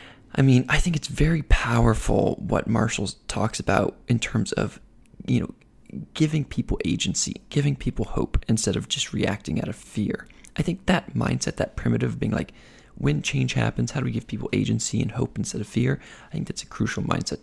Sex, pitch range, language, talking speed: male, 105-135 Hz, English, 195 wpm